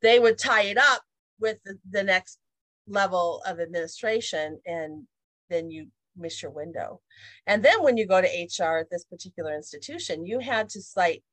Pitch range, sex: 165-225 Hz, female